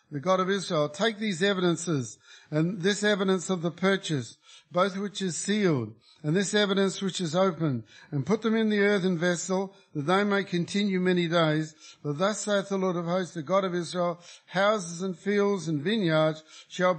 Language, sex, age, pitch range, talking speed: English, male, 50-69, 160-200 Hz, 185 wpm